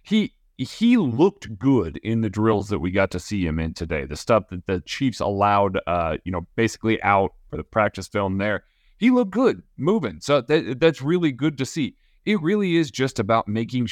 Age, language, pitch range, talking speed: 30-49, English, 105-140 Hz, 205 wpm